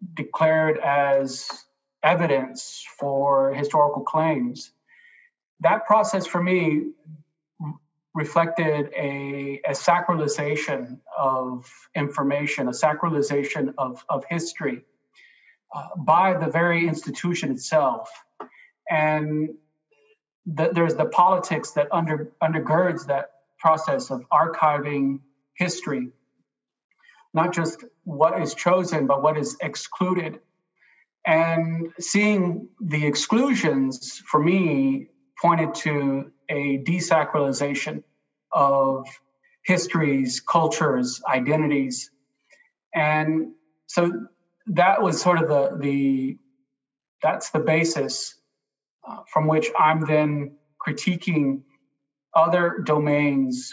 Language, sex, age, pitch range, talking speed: English, male, 30-49, 140-170 Hz, 95 wpm